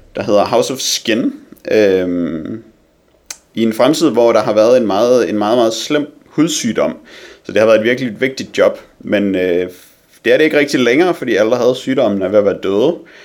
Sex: male